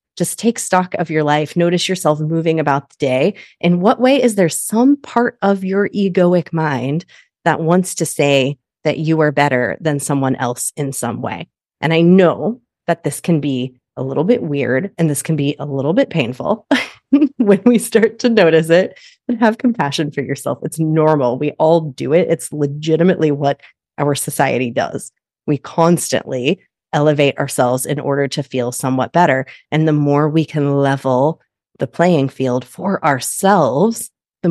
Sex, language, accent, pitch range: female, English, American, 140-175 Hz